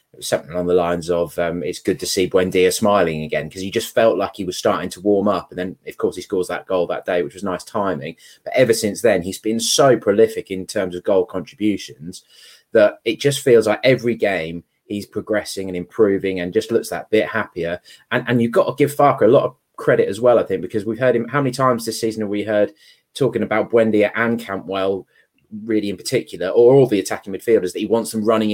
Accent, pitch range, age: British, 95-115 Hz, 20-39